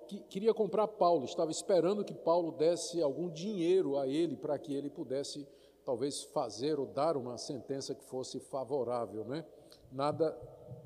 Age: 50-69